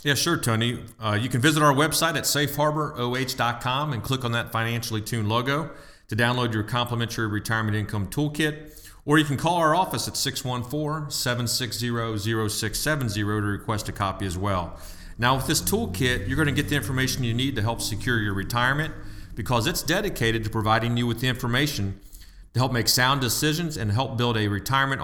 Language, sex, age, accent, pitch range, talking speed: English, male, 40-59, American, 110-135 Hz, 180 wpm